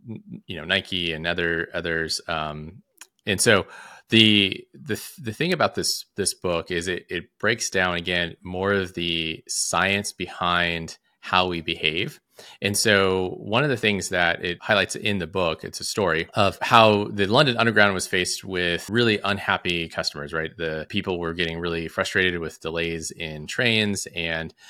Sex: male